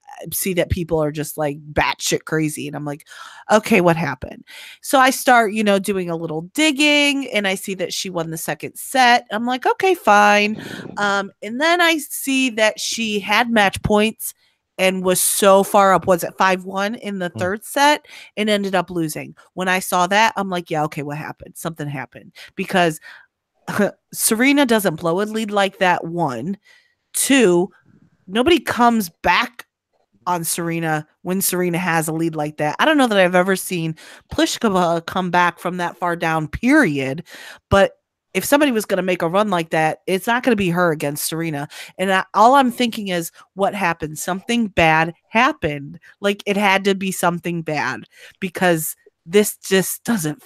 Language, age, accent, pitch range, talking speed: English, 30-49, American, 165-215 Hz, 180 wpm